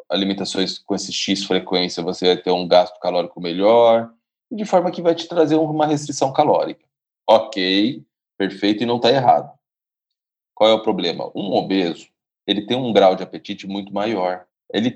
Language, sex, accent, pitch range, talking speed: Portuguese, male, Brazilian, 95-135 Hz, 170 wpm